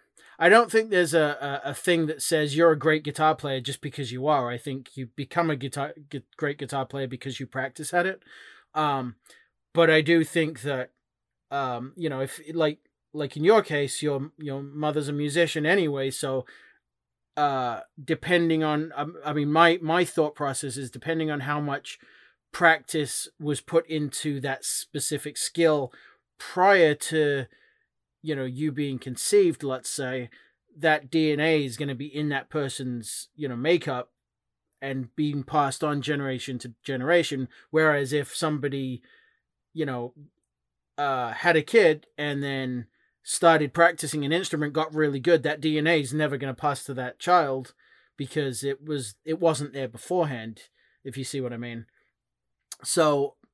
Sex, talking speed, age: male, 165 wpm, 30-49